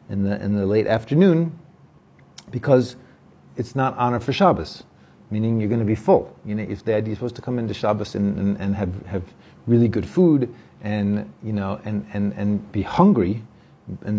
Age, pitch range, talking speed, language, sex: 40-59, 105-130 Hz, 185 wpm, English, male